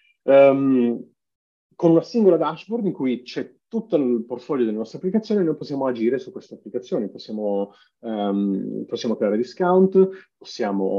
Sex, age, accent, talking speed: male, 30-49, native, 140 wpm